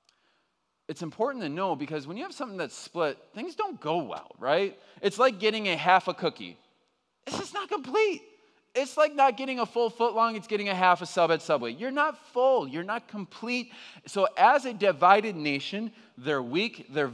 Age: 20-39